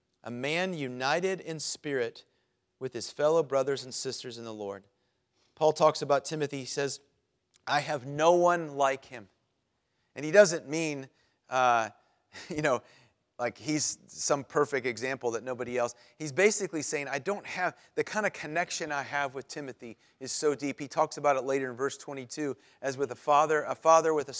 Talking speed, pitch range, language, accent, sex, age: 180 wpm, 130-160 Hz, English, American, male, 40-59